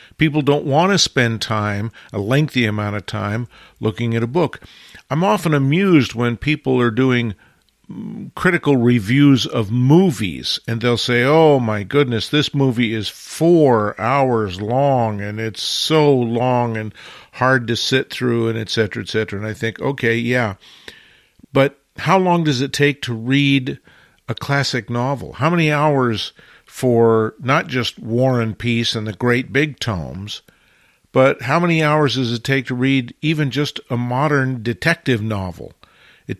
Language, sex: English, male